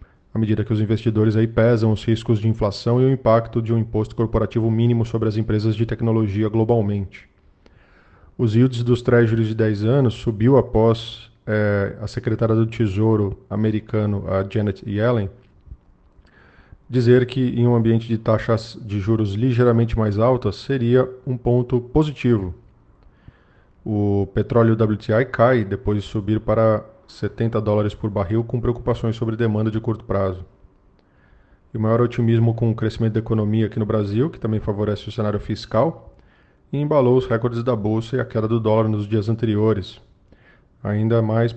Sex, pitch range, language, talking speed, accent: male, 105-115 Hz, Portuguese, 160 wpm, Brazilian